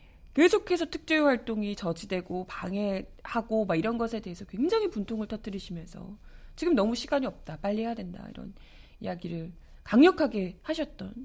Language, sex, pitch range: Korean, female, 190-280 Hz